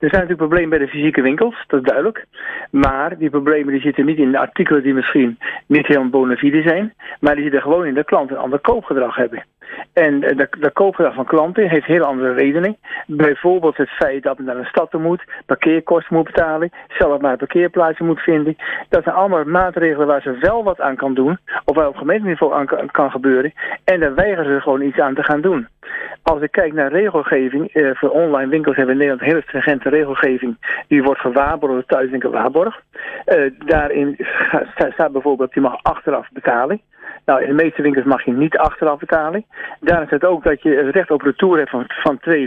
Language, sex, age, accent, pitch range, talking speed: Dutch, male, 50-69, Dutch, 135-165 Hz, 210 wpm